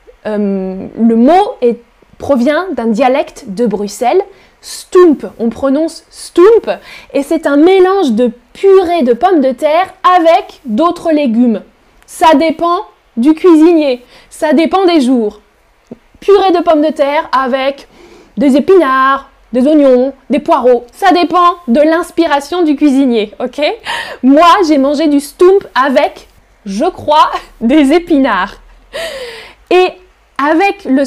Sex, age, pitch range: female, 10-29, 250-345 Hz